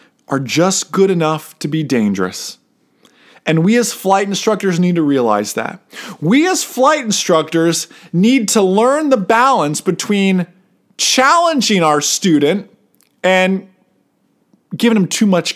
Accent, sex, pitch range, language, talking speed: American, male, 160-235 Hz, English, 130 wpm